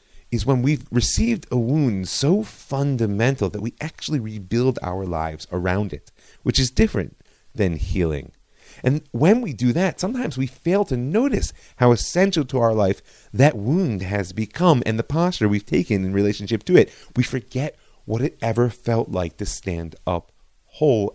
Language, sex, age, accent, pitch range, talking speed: English, male, 30-49, American, 95-130 Hz, 170 wpm